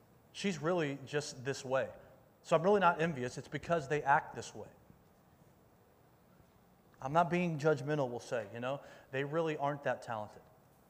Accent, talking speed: American, 160 wpm